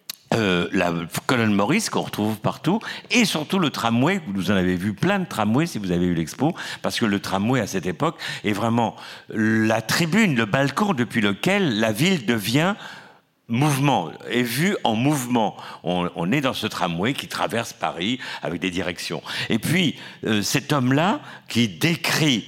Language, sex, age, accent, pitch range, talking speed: French, male, 50-69, French, 100-155 Hz, 175 wpm